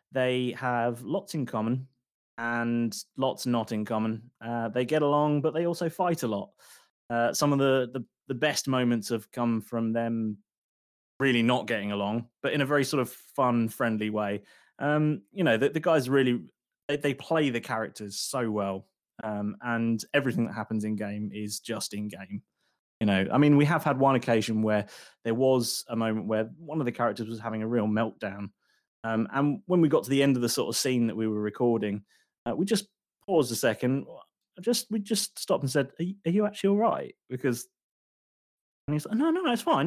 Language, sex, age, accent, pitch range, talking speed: English, male, 20-39, British, 115-155 Hz, 205 wpm